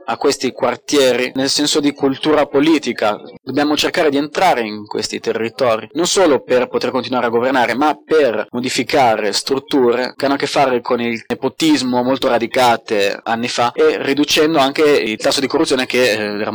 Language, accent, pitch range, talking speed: Italian, native, 120-145 Hz, 170 wpm